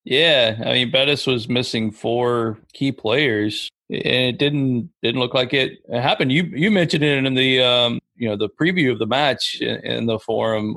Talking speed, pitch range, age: 190 wpm, 115-145 Hz, 40-59